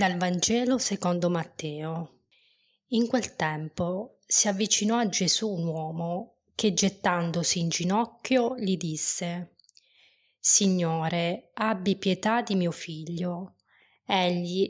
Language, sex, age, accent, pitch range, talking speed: Italian, female, 20-39, native, 175-210 Hz, 105 wpm